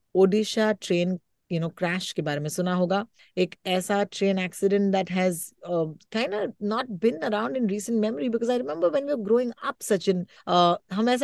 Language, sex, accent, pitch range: Hindi, female, native, 170-230 Hz